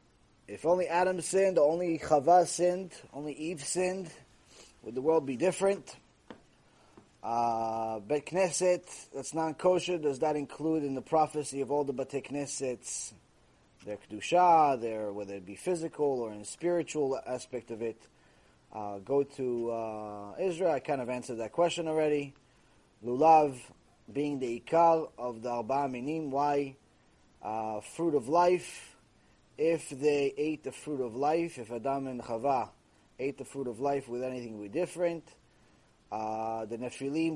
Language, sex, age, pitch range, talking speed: English, male, 20-39, 120-160 Hz, 150 wpm